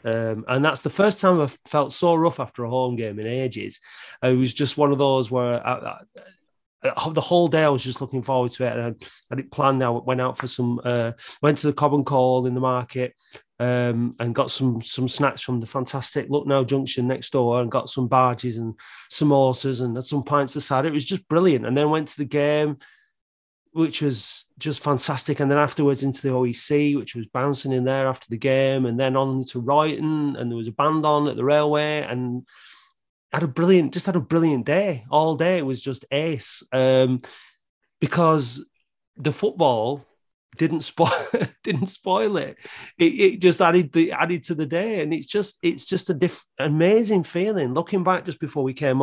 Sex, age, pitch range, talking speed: male, 30-49, 125-155 Hz, 210 wpm